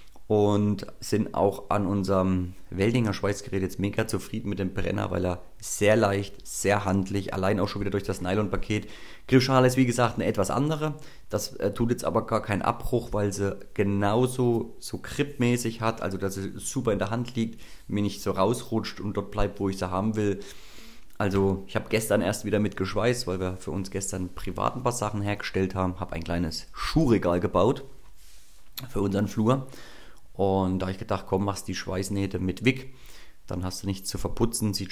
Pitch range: 95-110 Hz